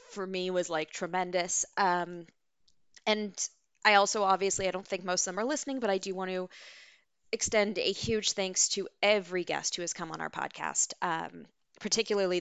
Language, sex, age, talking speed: English, female, 20-39, 185 wpm